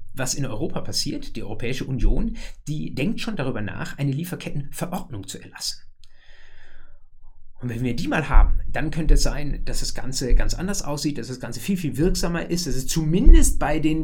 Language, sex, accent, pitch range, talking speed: German, male, German, 110-155 Hz, 190 wpm